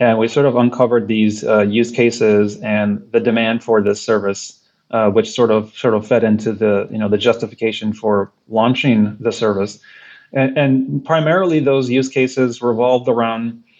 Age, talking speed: 30-49, 175 wpm